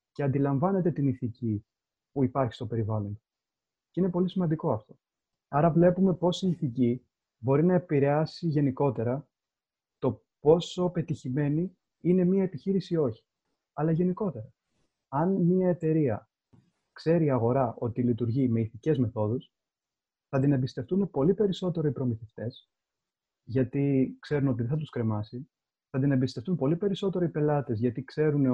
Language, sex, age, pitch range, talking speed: Greek, male, 30-49, 125-170 Hz, 140 wpm